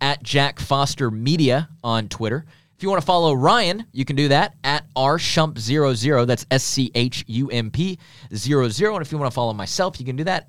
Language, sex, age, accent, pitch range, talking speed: English, male, 30-49, American, 130-170 Hz, 185 wpm